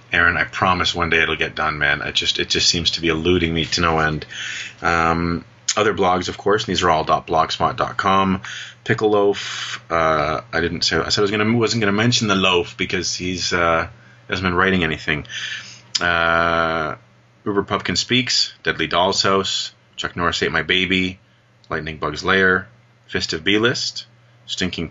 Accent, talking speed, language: American, 175 wpm, English